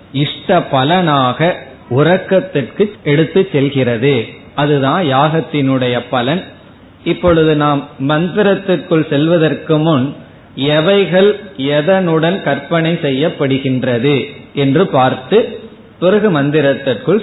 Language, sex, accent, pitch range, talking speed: Tamil, male, native, 135-175 Hz, 65 wpm